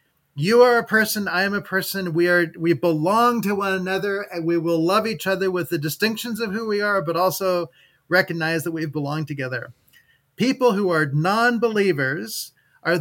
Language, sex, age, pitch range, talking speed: English, male, 40-59, 160-205 Hz, 185 wpm